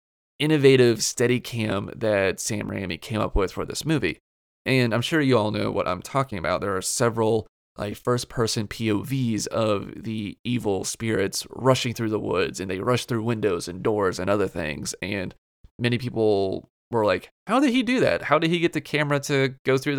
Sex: male